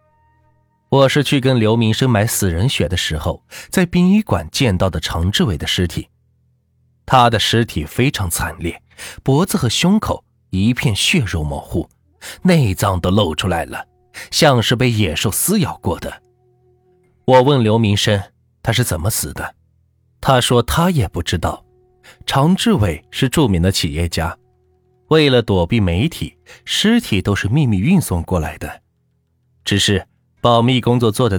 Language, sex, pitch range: Chinese, male, 90-125 Hz